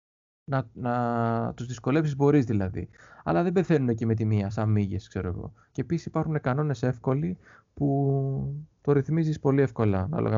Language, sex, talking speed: Greek, male, 160 wpm